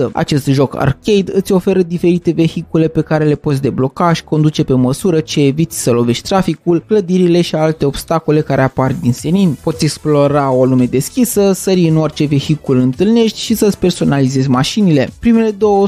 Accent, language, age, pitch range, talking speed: native, Romanian, 20-39, 135-185 Hz, 170 wpm